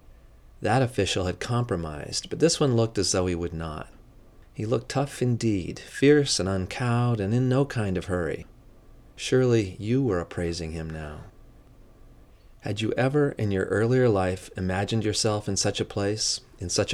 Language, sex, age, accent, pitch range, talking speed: English, male, 30-49, American, 95-115 Hz, 165 wpm